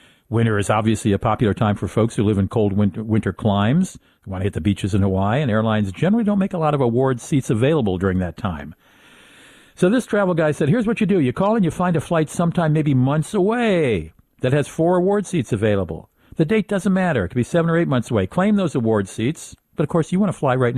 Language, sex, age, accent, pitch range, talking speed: English, male, 50-69, American, 105-155 Hz, 250 wpm